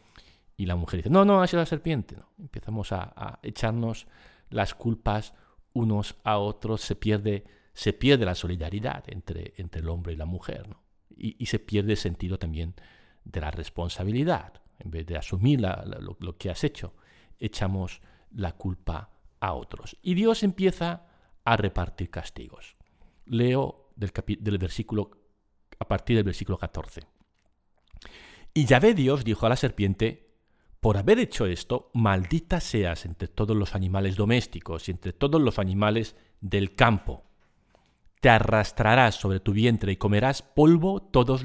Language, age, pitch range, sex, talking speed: Spanish, 50-69, 90-115 Hz, male, 160 wpm